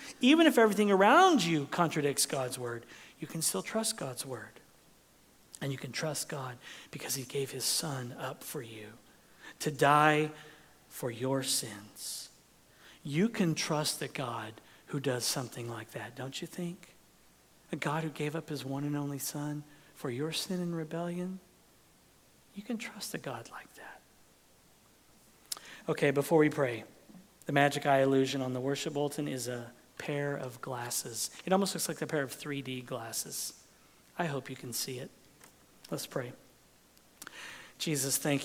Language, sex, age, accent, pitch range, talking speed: English, male, 50-69, American, 135-160 Hz, 160 wpm